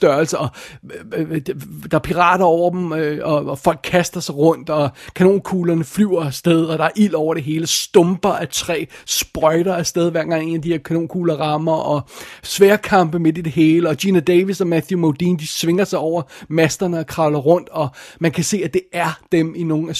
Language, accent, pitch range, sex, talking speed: Danish, native, 150-175 Hz, male, 200 wpm